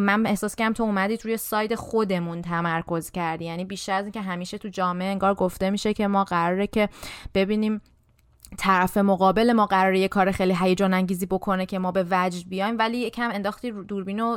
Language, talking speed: Persian, 190 wpm